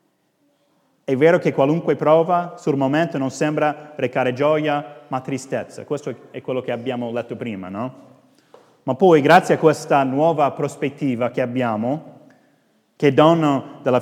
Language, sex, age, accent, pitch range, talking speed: Italian, male, 30-49, native, 125-165 Hz, 145 wpm